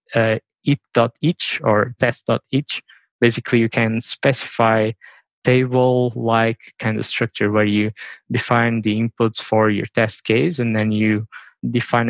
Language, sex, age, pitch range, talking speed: English, male, 20-39, 110-125 Hz, 125 wpm